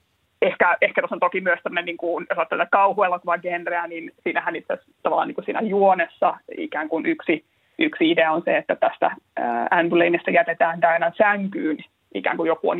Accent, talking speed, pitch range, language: native, 160 wpm, 165-225 Hz, Finnish